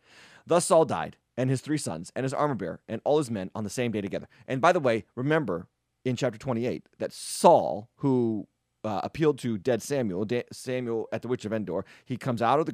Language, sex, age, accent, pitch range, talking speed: English, male, 30-49, American, 105-140 Hz, 225 wpm